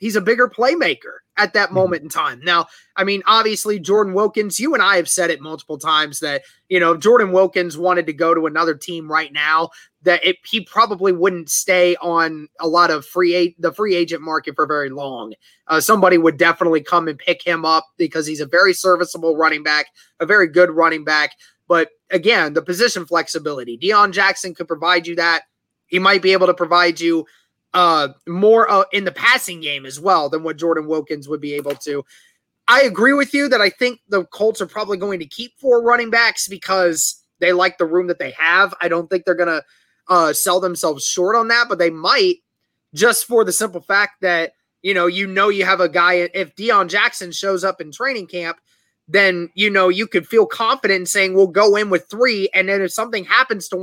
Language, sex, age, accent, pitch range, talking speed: English, male, 20-39, American, 165-200 Hz, 215 wpm